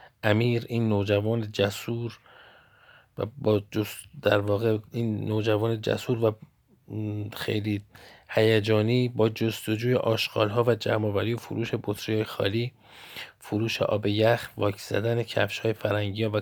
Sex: male